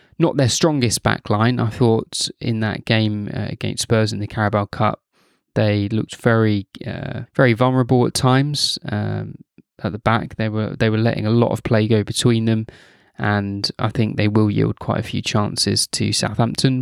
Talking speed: 185 wpm